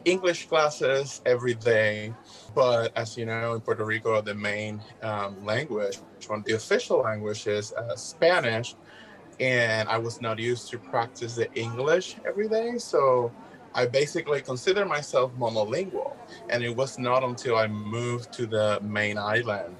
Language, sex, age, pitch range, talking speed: English, male, 20-39, 105-135 Hz, 155 wpm